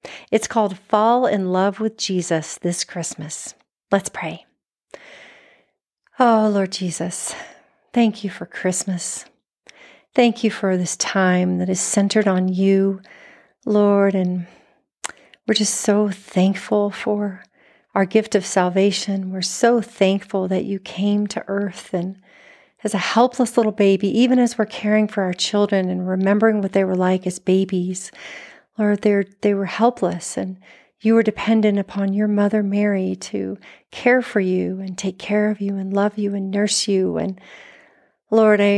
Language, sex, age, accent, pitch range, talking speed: English, female, 40-59, American, 190-215 Hz, 150 wpm